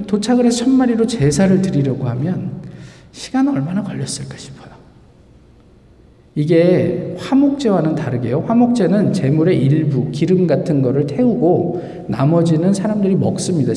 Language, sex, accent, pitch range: Korean, male, native, 150-215 Hz